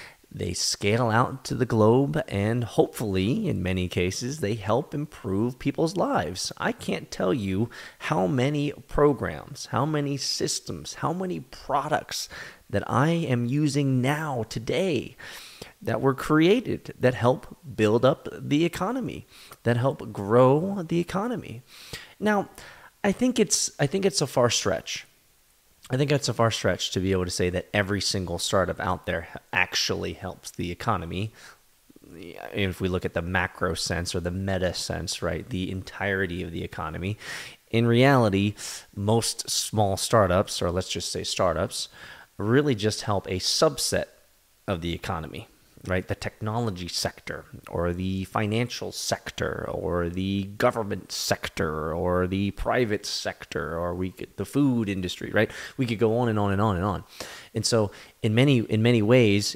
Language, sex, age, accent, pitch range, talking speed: English, male, 30-49, American, 95-130 Hz, 155 wpm